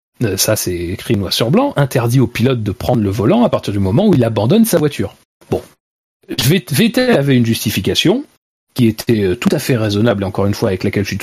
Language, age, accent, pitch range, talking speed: French, 40-59, French, 105-145 Hz, 225 wpm